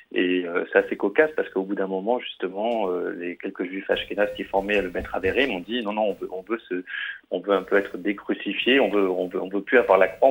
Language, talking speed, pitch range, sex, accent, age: French, 275 wpm, 95-110 Hz, male, French, 30-49